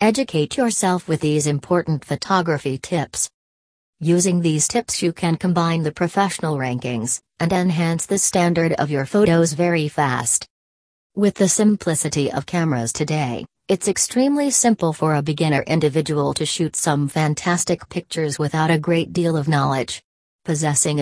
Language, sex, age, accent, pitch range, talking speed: English, female, 40-59, American, 150-175 Hz, 145 wpm